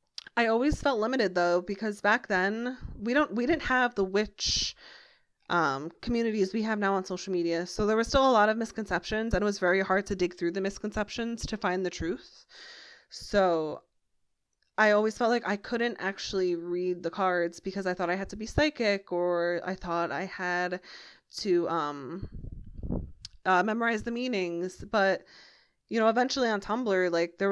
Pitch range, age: 180-225 Hz, 20-39